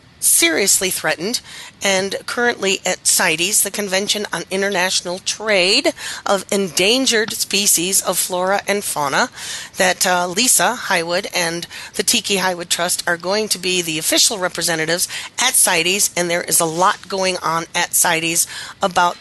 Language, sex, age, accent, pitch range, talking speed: English, female, 40-59, American, 170-210 Hz, 145 wpm